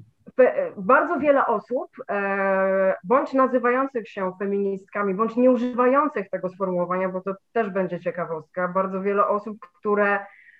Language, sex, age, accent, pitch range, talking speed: Polish, female, 20-39, native, 215-260 Hz, 120 wpm